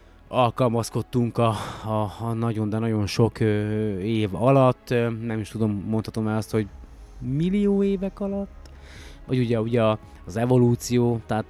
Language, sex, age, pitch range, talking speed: Hungarian, male, 20-39, 105-125 Hz, 140 wpm